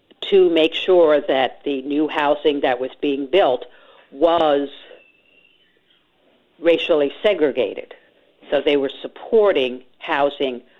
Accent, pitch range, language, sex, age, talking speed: American, 140-170 Hz, English, female, 50-69, 105 wpm